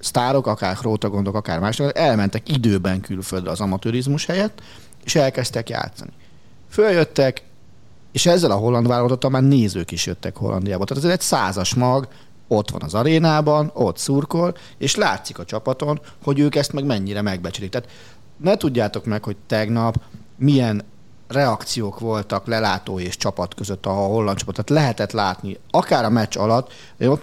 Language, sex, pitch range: Hungarian, male, 100-140 Hz